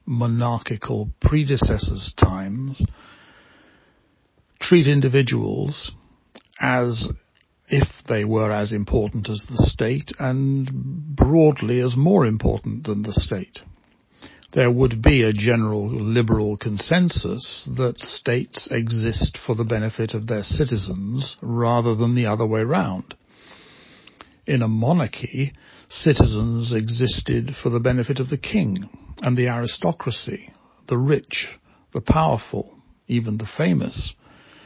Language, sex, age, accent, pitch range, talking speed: English, male, 60-79, British, 110-130 Hz, 115 wpm